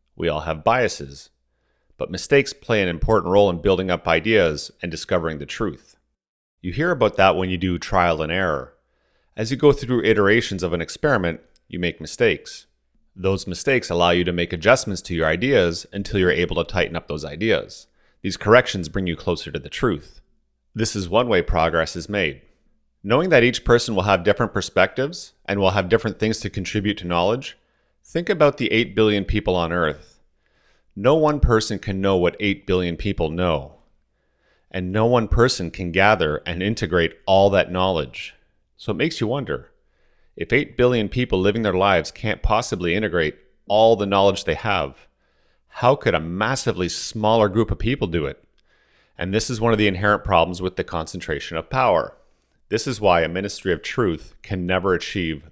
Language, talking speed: English, 185 wpm